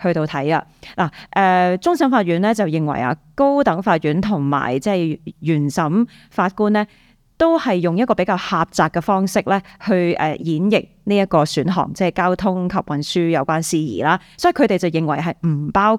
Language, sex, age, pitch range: Chinese, female, 20-39, 165-220 Hz